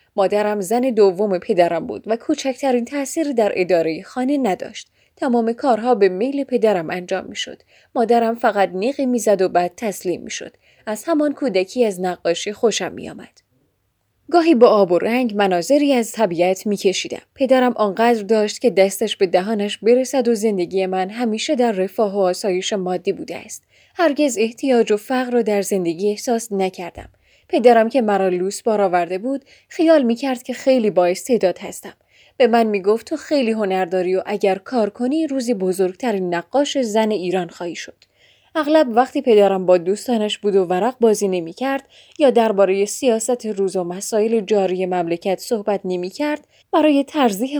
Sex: female